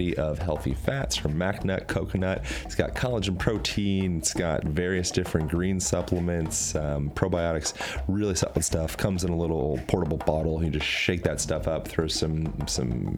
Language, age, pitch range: English, 30-49, 75-95 Hz